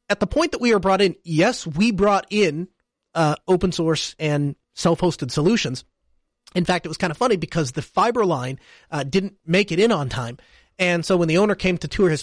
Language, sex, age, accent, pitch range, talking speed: English, male, 30-49, American, 150-200 Hz, 220 wpm